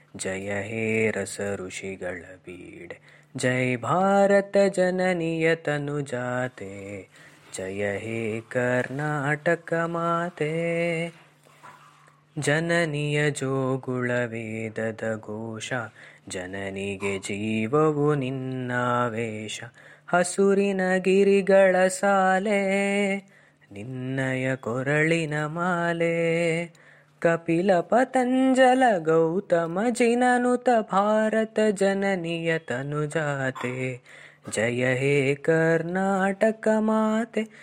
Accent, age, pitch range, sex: native, 20-39, 125-195 Hz, female